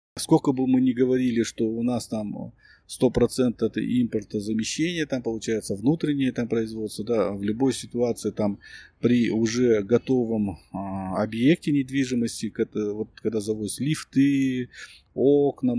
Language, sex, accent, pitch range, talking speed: Russian, male, native, 110-130 Hz, 130 wpm